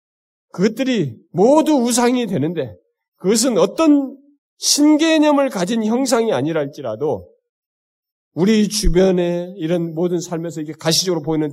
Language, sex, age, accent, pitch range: Korean, male, 40-59, native, 175-285 Hz